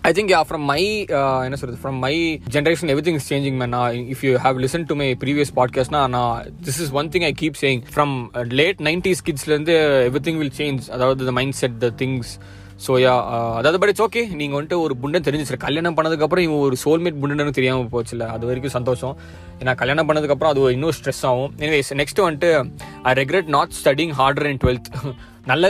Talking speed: 205 wpm